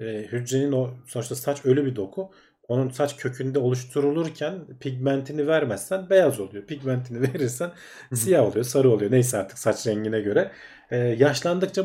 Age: 40-59